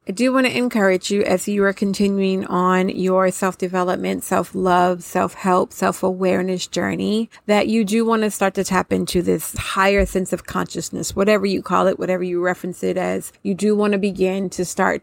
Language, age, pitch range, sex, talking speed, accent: English, 30-49, 175-195 Hz, female, 190 wpm, American